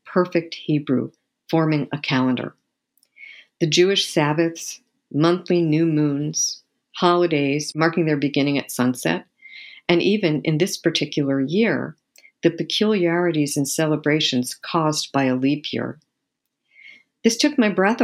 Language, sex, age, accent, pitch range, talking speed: English, female, 50-69, American, 145-185 Hz, 120 wpm